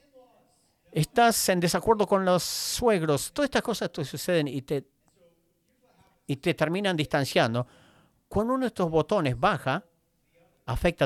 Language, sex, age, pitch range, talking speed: English, male, 50-69, 130-175 Hz, 130 wpm